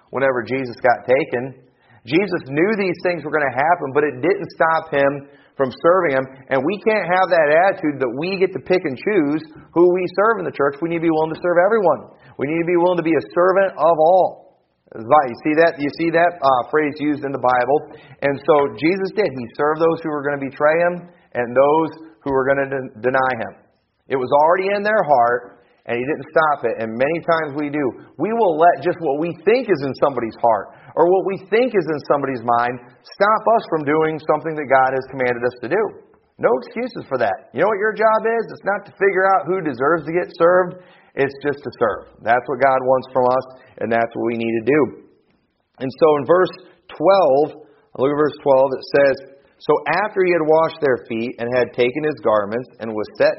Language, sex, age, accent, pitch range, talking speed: English, male, 40-59, American, 130-175 Hz, 225 wpm